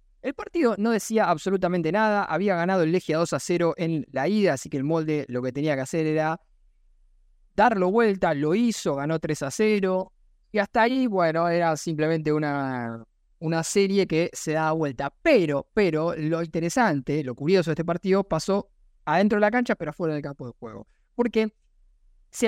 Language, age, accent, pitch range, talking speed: Spanish, 20-39, Argentinian, 140-210 Hz, 185 wpm